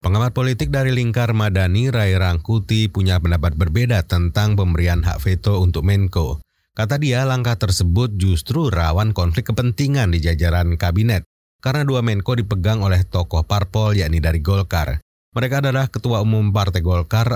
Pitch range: 90-120 Hz